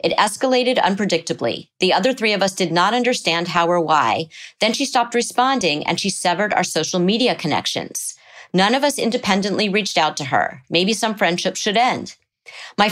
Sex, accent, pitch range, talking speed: female, American, 170-220 Hz, 180 wpm